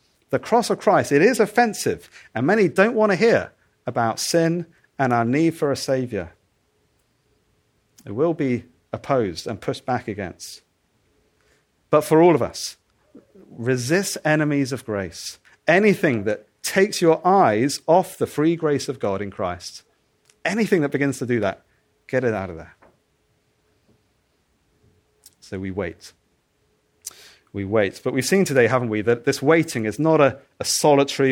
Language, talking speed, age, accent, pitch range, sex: English, 155 wpm, 40-59, British, 110-160 Hz, male